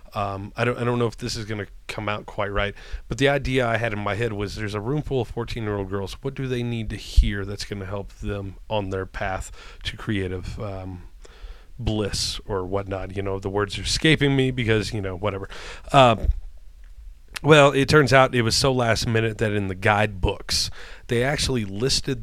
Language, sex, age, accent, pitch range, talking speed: English, male, 30-49, American, 100-115 Hz, 215 wpm